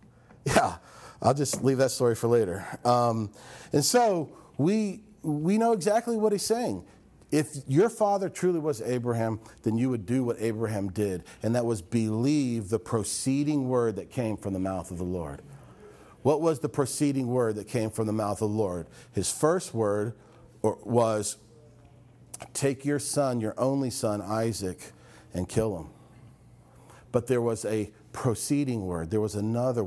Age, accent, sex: 40-59, American, male